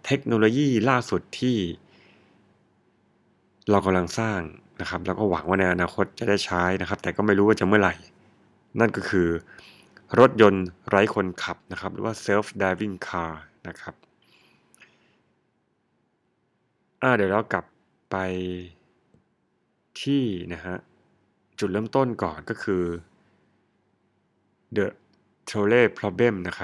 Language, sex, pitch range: Thai, male, 90-110 Hz